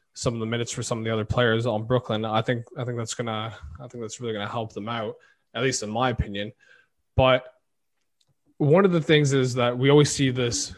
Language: English